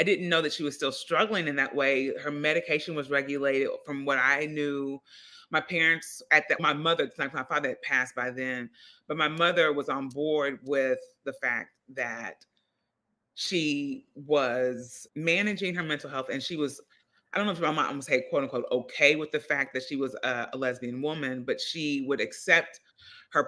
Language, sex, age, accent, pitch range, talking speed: English, female, 30-49, American, 135-165 Hz, 195 wpm